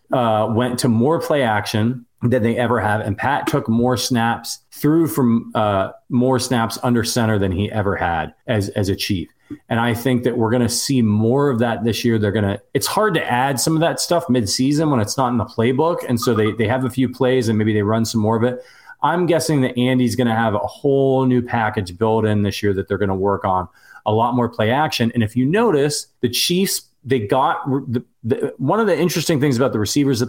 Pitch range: 105-125 Hz